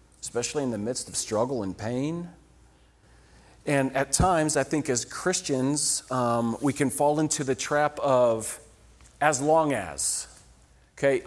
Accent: American